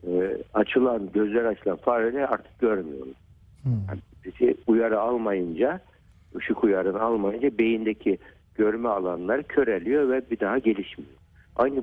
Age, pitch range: 60-79, 95-135 Hz